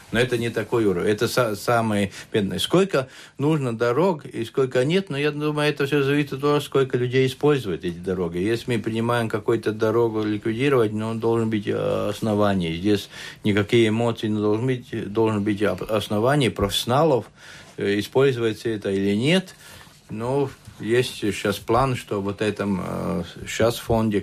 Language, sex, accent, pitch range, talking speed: Russian, male, native, 100-130 Hz, 145 wpm